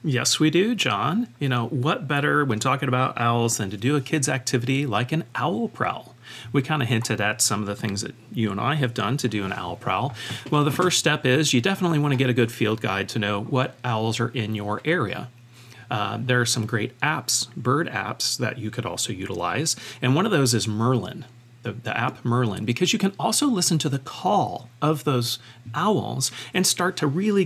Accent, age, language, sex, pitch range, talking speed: American, 40-59, English, male, 115-150 Hz, 225 wpm